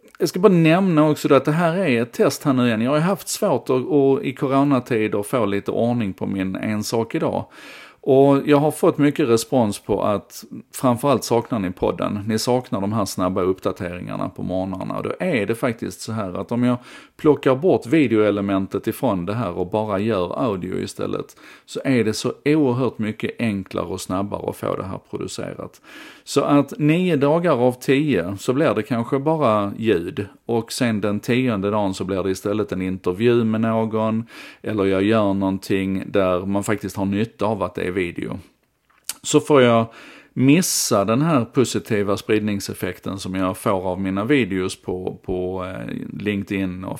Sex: male